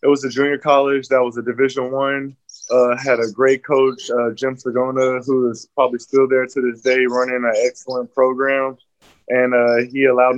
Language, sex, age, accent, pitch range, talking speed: English, male, 20-39, American, 120-130 Hz, 190 wpm